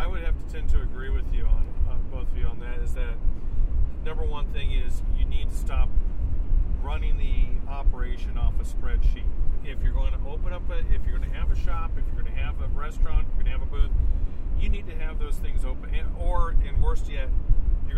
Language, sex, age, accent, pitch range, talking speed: English, male, 50-69, American, 70-85 Hz, 245 wpm